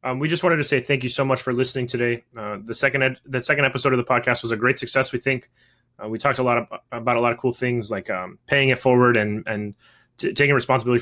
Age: 20-39